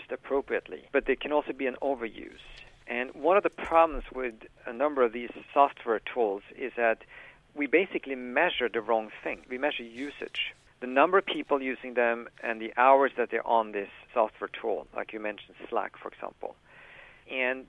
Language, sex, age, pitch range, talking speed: English, male, 50-69, 115-140 Hz, 180 wpm